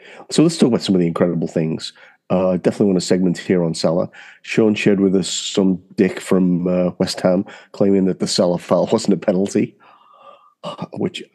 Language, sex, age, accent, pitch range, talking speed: English, male, 30-49, British, 90-100 Hz, 195 wpm